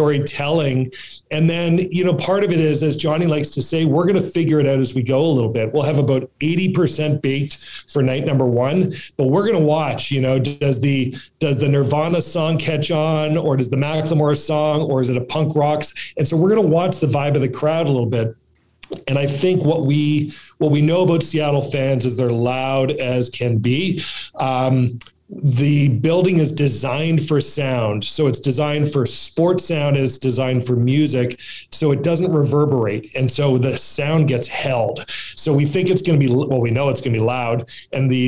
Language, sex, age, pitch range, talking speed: English, male, 40-59, 130-155 Hz, 215 wpm